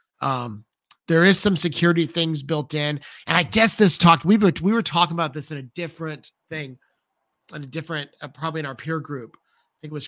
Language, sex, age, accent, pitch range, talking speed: English, male, 30-49, American, 130-165 Hz, 215 wpm